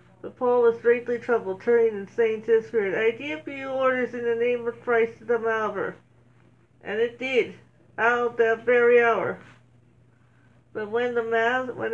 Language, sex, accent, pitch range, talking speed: English, female, American, 185-250 Hz, 170 wpm